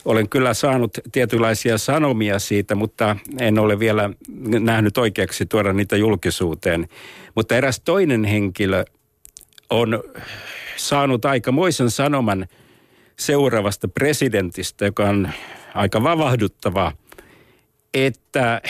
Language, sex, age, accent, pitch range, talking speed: Finnish, male, 60-79, native, 105-135 Hz, 100 wpm